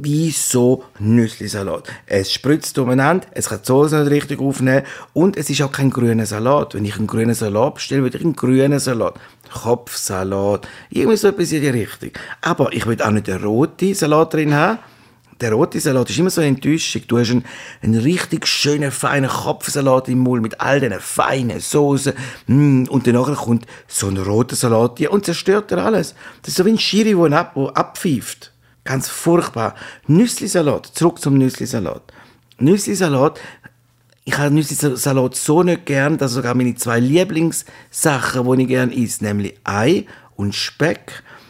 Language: German